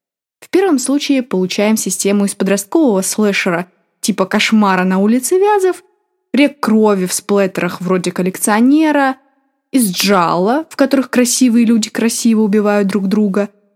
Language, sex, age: Russian, female, 20-39